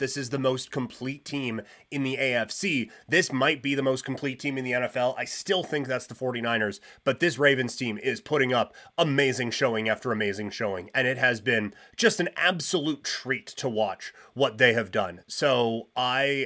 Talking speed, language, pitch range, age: 195 wpm, English, 120-155 Hz, 30-49